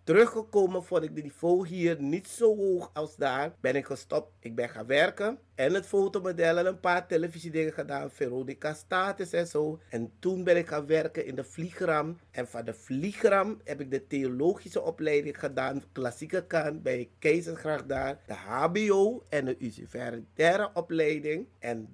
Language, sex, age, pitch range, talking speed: Dutch, male, 30-49, 140-180 Hz, 170 wpm